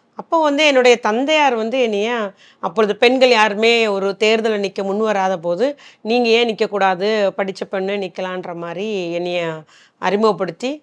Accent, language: native, Tamil